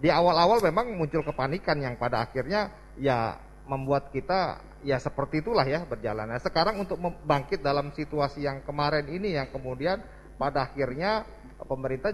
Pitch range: 130-175 Hz